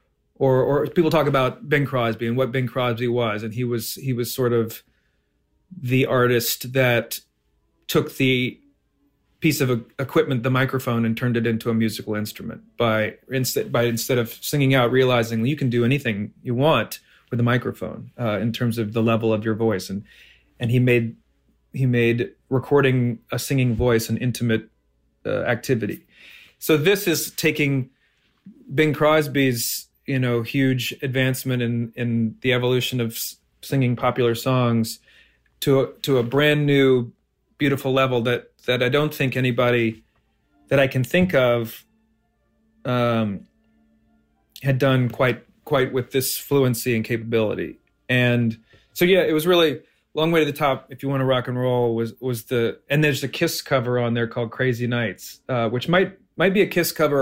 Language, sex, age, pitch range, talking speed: English, male, 40-59, 115-135 Hz, 170 wpm